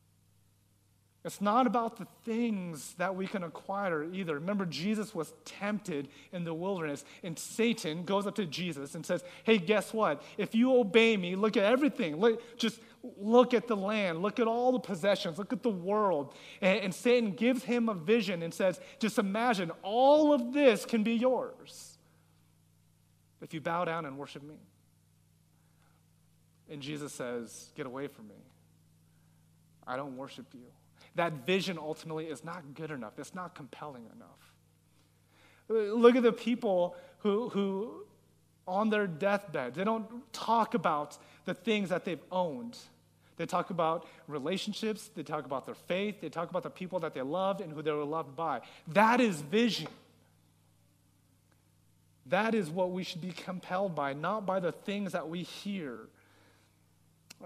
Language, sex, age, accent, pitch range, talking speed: English, male, 30-49, American, 145-215 Hz, 160 wpm